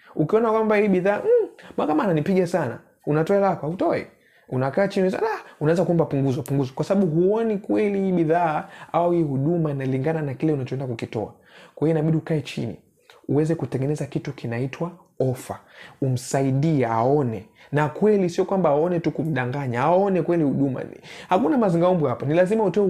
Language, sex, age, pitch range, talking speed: Swahili, male, 30-49, 125-175 Hz, 150 wpm